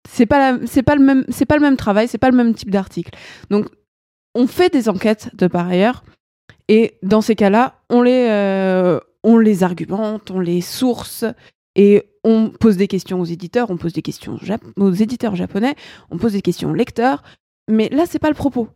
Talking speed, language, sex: 210 wpm, French, female